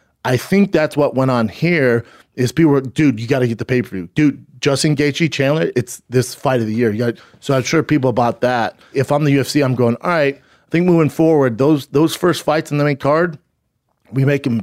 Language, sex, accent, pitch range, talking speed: English, male, American, 120-145 Hz, 235 wpm